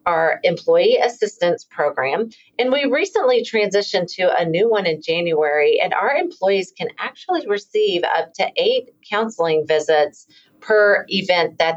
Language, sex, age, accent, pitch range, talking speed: English, female, 40-59, American, 170-285 Hz, 145 wpm